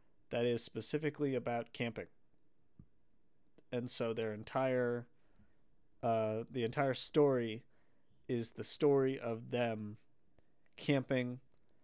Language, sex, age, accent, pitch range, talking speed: English, male, 30-49, American, 115-140 Hz, 95 wpm